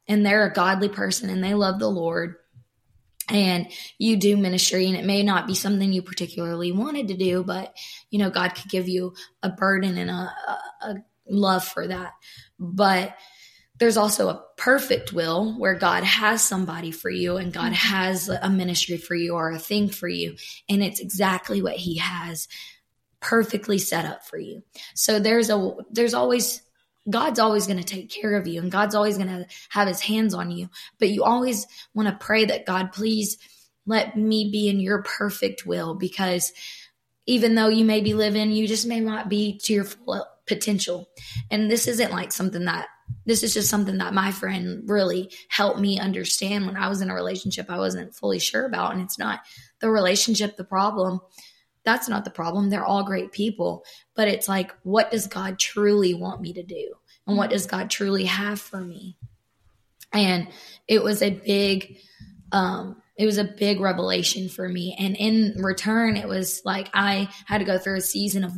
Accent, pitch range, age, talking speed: American, 180-210 Hz, 20-39, 190 wpm